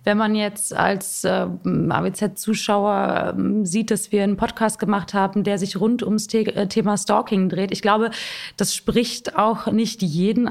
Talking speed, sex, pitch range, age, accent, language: 170 wpm, female, 195-220 Hz, 20-39, German, German